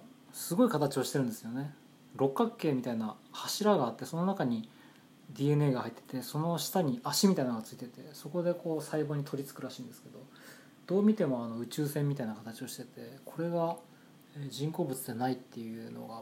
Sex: male